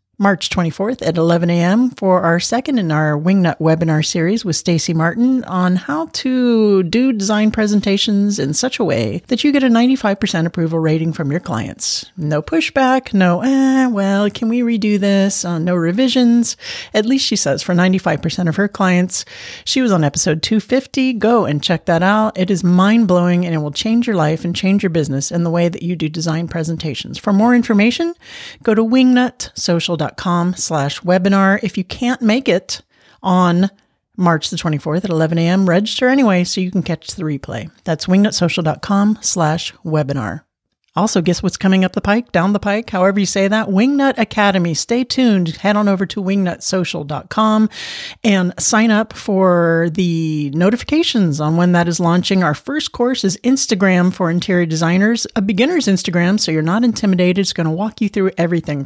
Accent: American